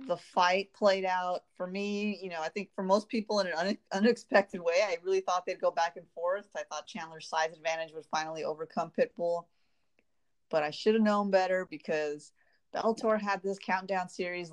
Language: English